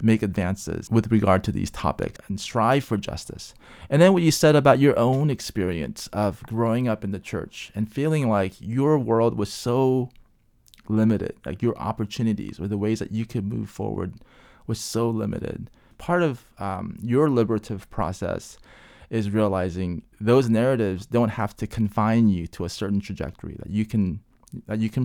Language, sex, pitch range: English, male, 105-130 Hz